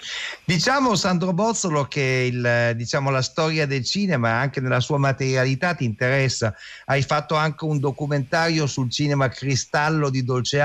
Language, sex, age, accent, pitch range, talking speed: Italian, male, 50-69, native, 125-155 Hz, 145 wpm